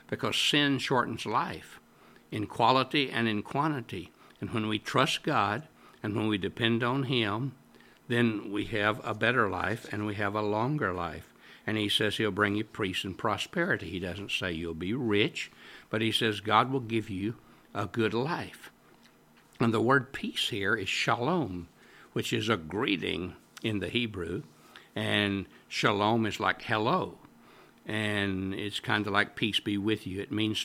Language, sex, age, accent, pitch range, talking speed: English, male, 60-79, American, 95-115 Hz, 170 wpm